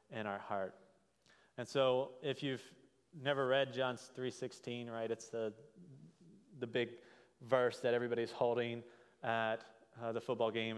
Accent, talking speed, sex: American, 140 wpm, male